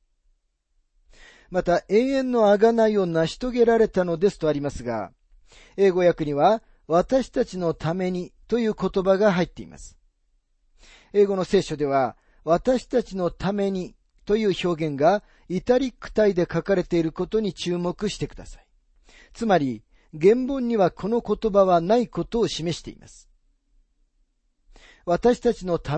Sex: male